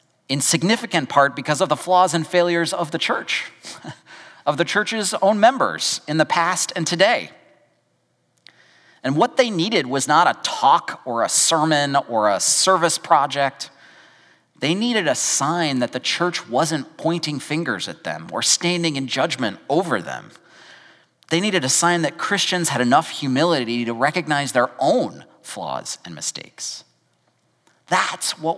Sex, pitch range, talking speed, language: male, 125-170 Hz, 155 wpm, English